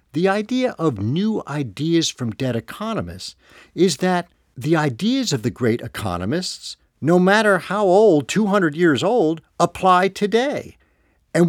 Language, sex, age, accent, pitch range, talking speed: English, male, 50-69, American, 120-195 Hz, 135 wpm